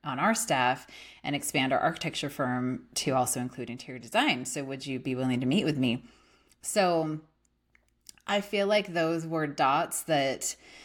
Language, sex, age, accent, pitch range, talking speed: English, female, 30-49, American, 130-160 Hz, 165 wpm